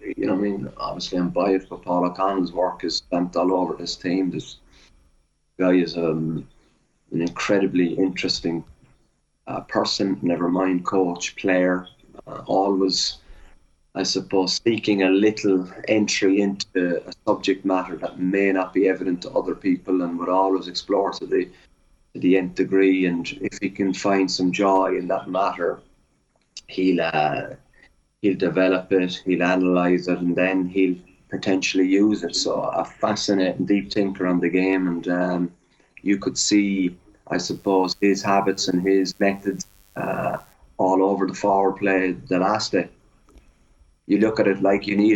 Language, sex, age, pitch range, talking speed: English, male, 30-49, 90-100 Hz, 160 wpm